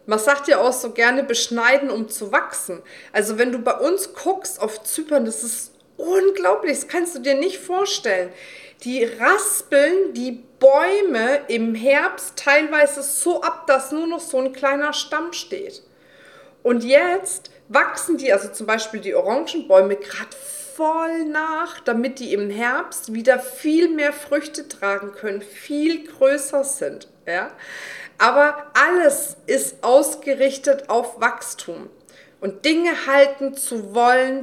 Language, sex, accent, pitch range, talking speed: German, female, German, 235-305 Hz, 140 wpm